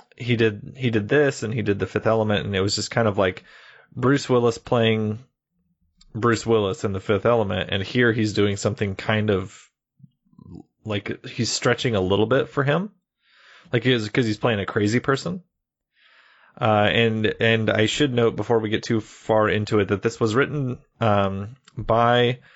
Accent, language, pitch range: American, English, 100-120 Hz